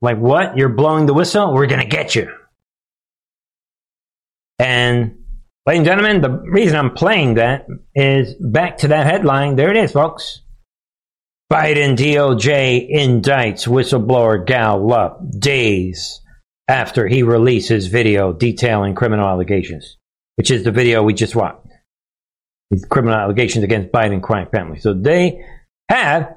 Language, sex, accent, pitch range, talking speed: English, male, American, 115-145 Hz, 135 wpm